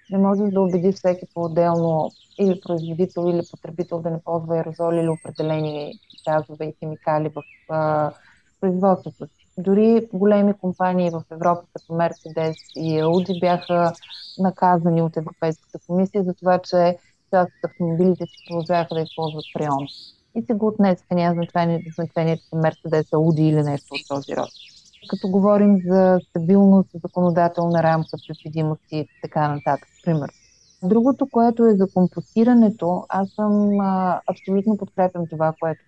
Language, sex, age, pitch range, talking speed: Bulgarian, female, 30-49, 165-195 Hz, 140 wpm